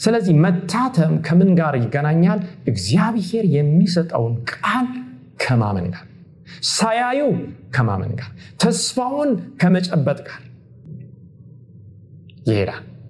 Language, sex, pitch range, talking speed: Amharic, male, 120-170 Hz, 75 wpm